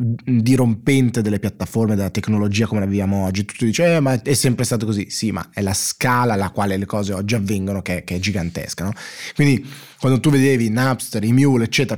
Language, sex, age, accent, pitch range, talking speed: Italian, male, 20-39, native, 105-130 Hz, 205 wpm